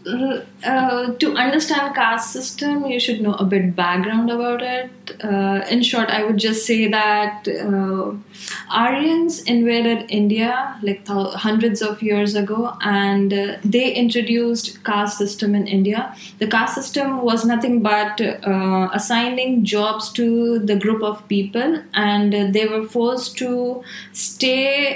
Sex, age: female, 20-39